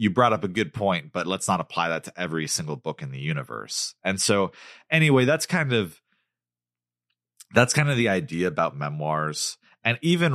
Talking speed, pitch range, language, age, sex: 190 wpm, 75-120 Hz, English, 30-49, male